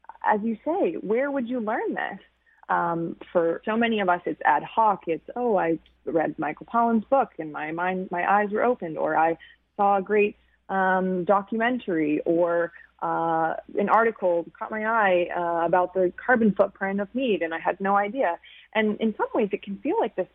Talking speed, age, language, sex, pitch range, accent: 195 wpm, 30-49, English, female, 170-225 Hz, American